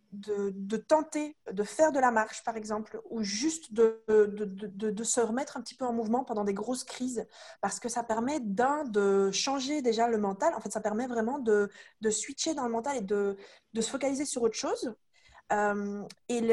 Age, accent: 20-39, French